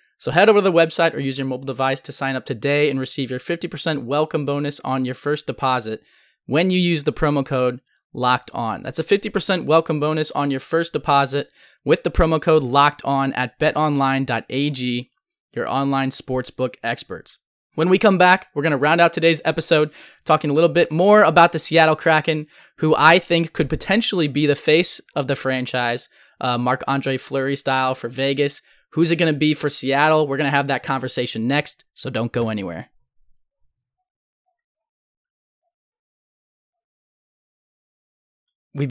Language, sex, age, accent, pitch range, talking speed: English, male, 20-39, American, 130-160 Hz, 170 wpm